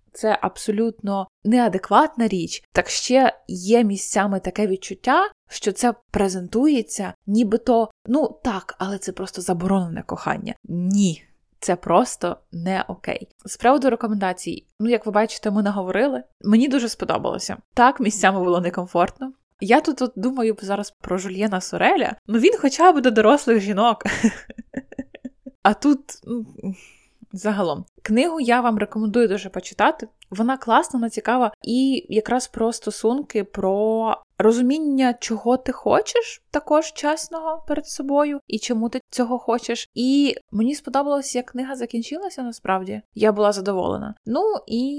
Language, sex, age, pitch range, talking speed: Ukrainian, female, 20-39, 200-250 Hz, 130 wpm